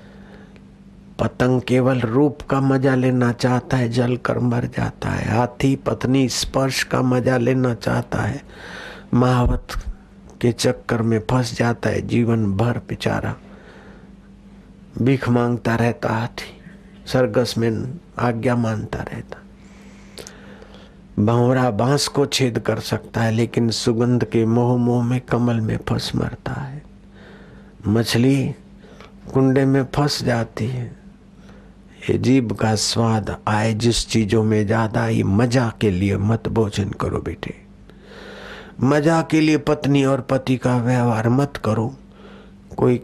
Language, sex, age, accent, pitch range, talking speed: Hindi, male, 60-79, native, 110-130 Hz, 125 wpm